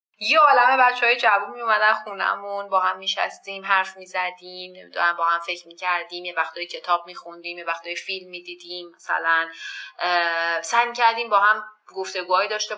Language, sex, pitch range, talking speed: Persian, female, 160-215 Hz, 175 wpm